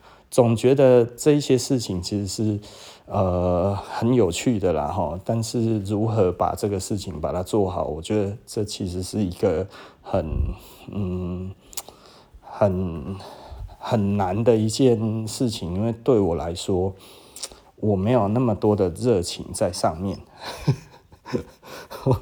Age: 30-49